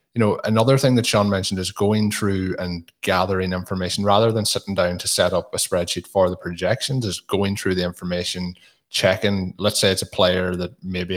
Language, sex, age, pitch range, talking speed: English, male, 20-39, 90-100 Hz, 205 wpm